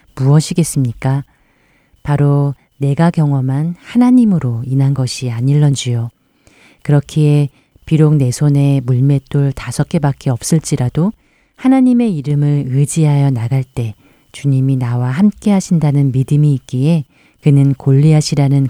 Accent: native